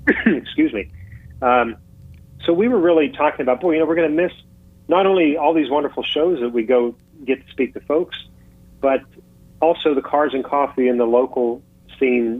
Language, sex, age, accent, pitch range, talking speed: English, male, 40-59, American, 110-135 Hz, 190 wpm